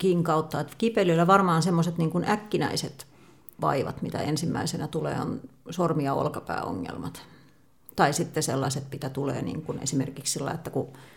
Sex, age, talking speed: female, 40-59, 135 wpm